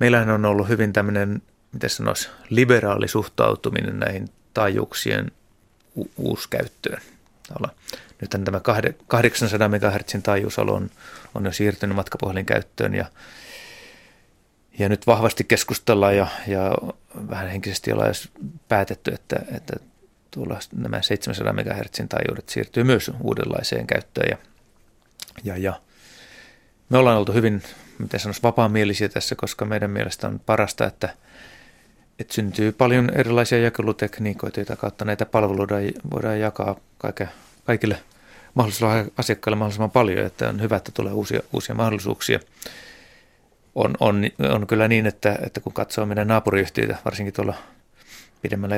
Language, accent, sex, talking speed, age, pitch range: Finnish, native, male, 120 wpm, 30-49, 100-115 Hz